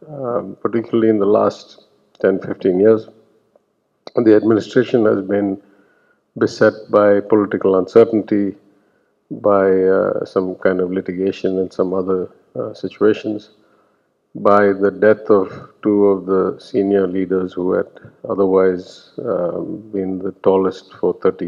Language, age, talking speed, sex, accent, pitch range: English, 50-69, 130 wpm, male, Indian, 95-110 Hz